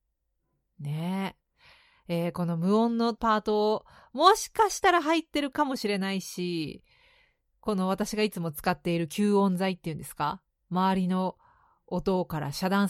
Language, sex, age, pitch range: Japanese, female, 40-59, 170-240 Hz